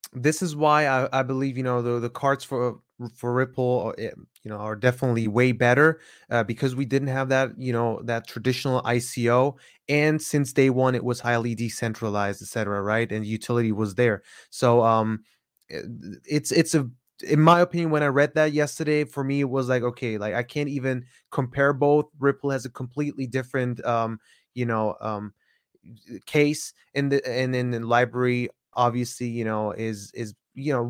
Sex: male